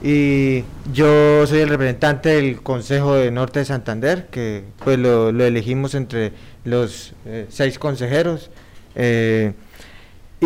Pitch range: 120-150 Hz